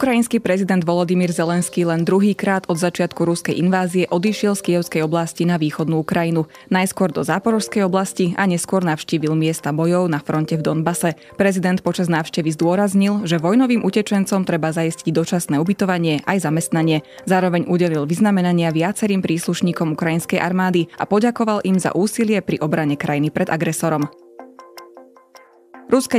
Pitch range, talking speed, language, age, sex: 165-195 Hz, 140 wpm, Slovak, 20-39, female